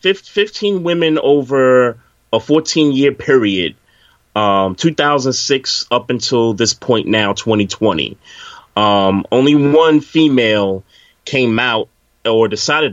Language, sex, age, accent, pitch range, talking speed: English, male, 30-49, American, 100-120 Hz, 100 wpm